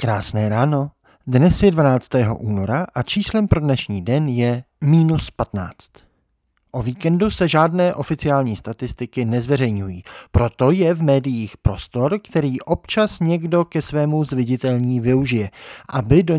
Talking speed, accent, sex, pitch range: 125 wpm, native, male, 115-155 Hz